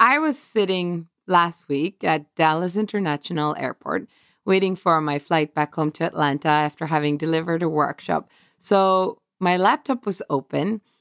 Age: 30-49